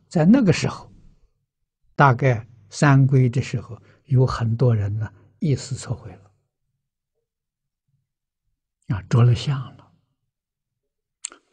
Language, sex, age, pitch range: Chinese, male, 60-79, 120-140 Hz